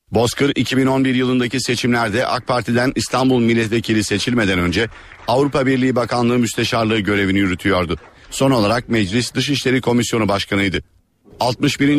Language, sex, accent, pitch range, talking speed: Turkish, male, native, 105-130 Hz, 115 wpm